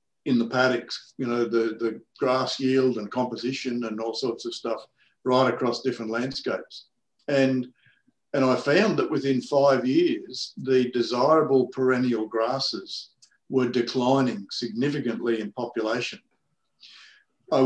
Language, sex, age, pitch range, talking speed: English, male, 50-69, 120-135 Hz, 130 wpm